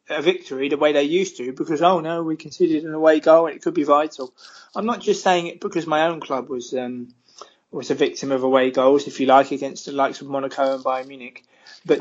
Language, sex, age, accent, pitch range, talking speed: English, male, 20-39, British, 135-165 Hz, 245 wpm